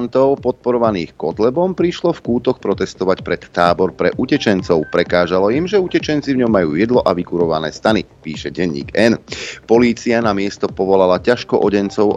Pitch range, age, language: 85-120 Hz, 40-59, Slovak